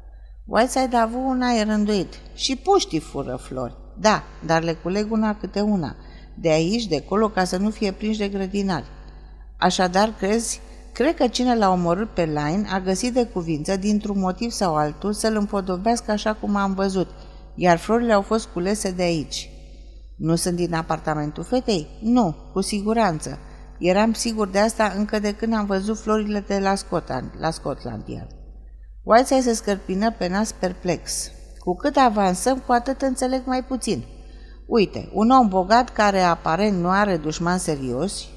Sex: female